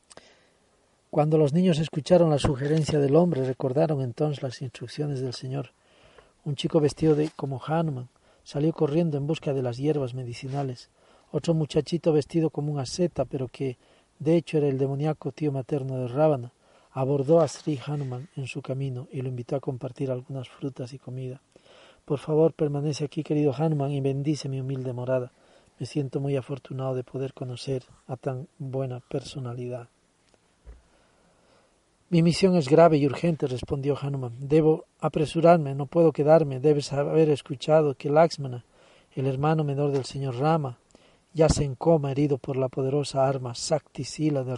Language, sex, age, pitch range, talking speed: Spanish, male, 40-59, 130-155 Hz, 160 wpm